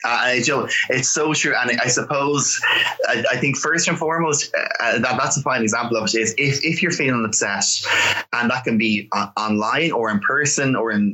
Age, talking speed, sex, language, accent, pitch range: 20-39, 210 wpm, male, English, Irish, 105-150 Hz